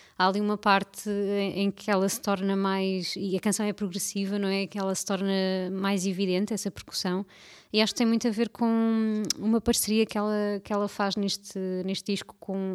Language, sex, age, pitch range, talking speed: Portuguese, female, 20-39, 185-210 Hz, 205 wpm